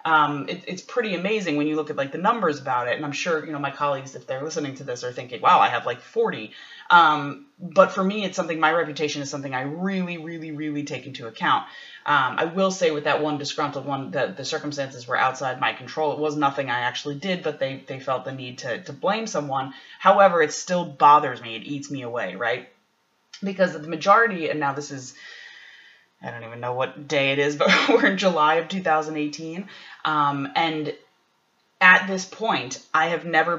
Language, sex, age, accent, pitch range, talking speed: English, female, 20-39, American, 140-175 Hz, 215 wpm